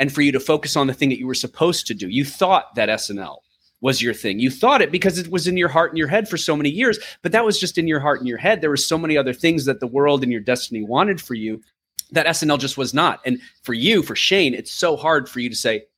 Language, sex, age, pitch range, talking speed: English, male, 30-49, 125-165 Hz, 295 wpm